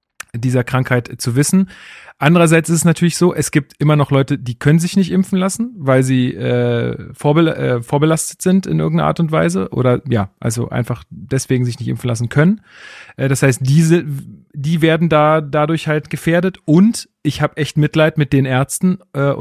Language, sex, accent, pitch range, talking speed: German, male, German, 135-165 Hz, 190 wpm